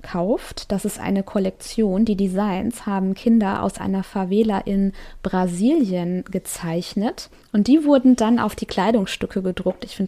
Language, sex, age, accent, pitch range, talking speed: German, female, 20-39, German, 195-235 Hz, 150 wpm